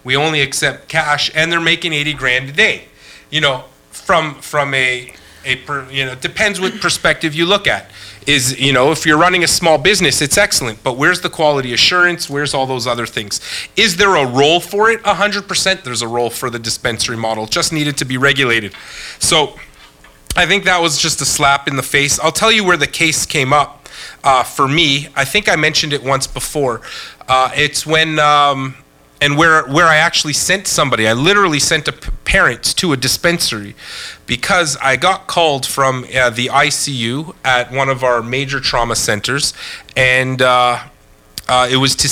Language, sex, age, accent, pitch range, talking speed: English, male, 30-49, American, 130-160 Hz, 195 wpm